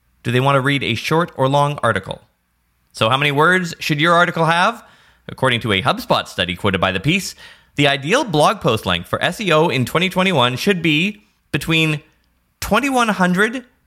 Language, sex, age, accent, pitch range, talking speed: English, male, 20-39, American, 100-160 Hz, 175 wpm